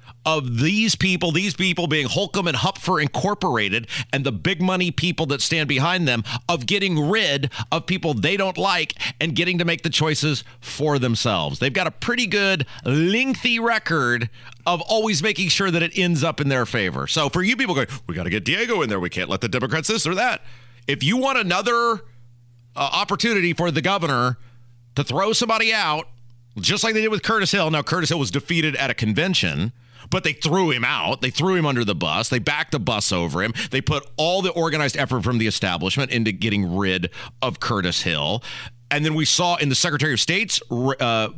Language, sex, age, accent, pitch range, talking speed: English, male, 40-59, American, 120-175 Hz, 205 wpm